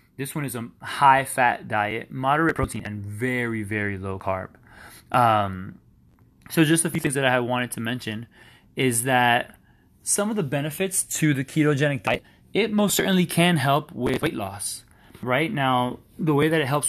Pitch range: 115-150 Hz